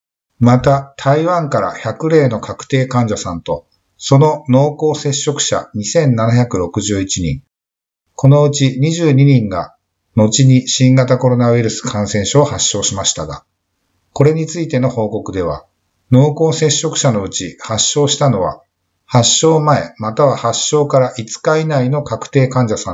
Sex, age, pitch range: male, 50-69, 110-145 Hz